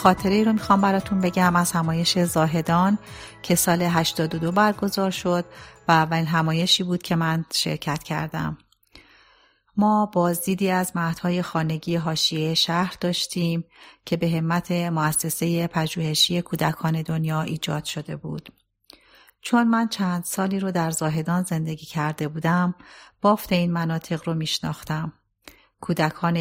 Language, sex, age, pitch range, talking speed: Persian, female, 40-59, 160-175 Hz, 125 wpm